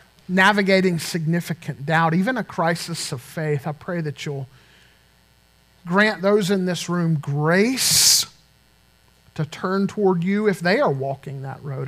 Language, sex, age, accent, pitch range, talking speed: English, male, 40-59, American, 160-245 Hz, 140 wpm